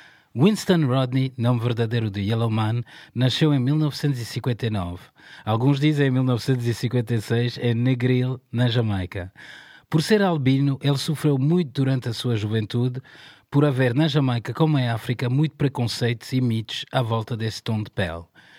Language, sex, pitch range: Portuguese, male, 115-140 Hz